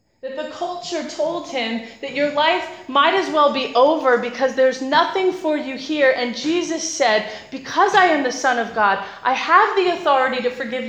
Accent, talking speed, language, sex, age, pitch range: American, 195 wpm, English, female, 30-49, 250-330 Hz